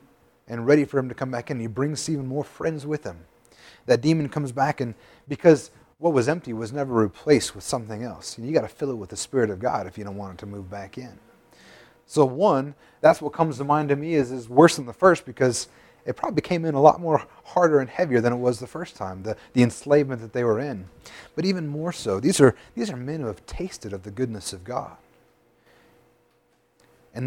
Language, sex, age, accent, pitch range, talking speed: English, male, 30-49, American, 110-145 Hz, 240 wpm